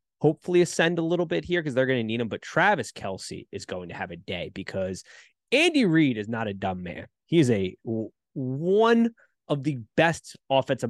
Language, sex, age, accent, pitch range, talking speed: English, male, 20-39, American, 115-155 Hz, 200 wpm